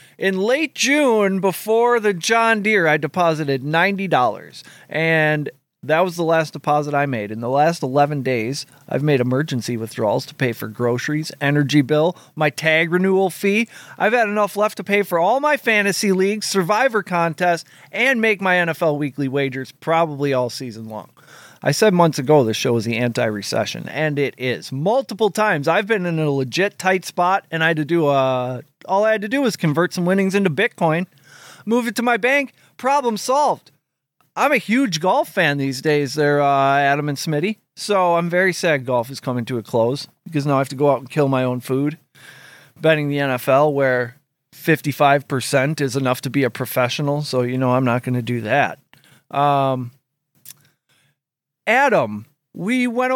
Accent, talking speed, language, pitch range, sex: American, 185 wpm, English, 135-195 Hz, male